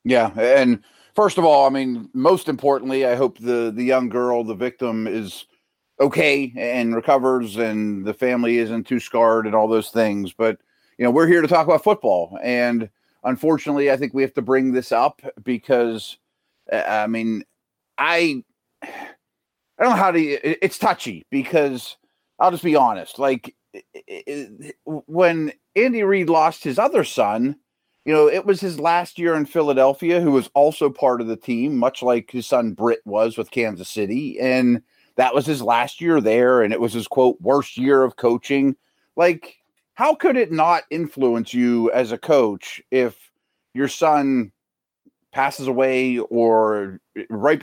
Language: English